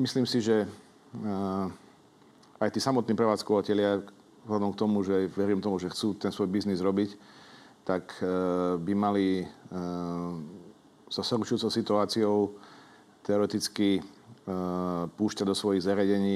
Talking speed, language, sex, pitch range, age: 125 wpm, Slovak, male, 90-105 Hz, 40-59